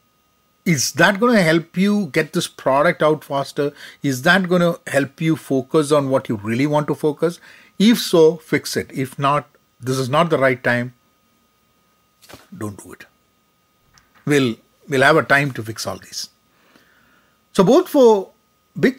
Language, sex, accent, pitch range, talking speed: English, male, Indian, 120-165 Hz, 170 wpm